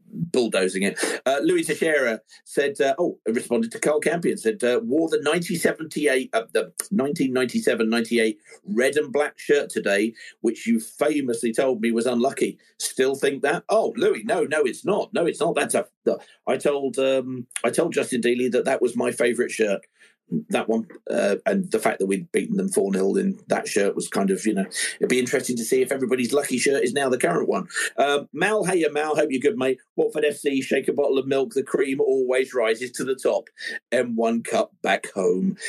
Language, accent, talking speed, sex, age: English, British, 200 wpm, male, 40-59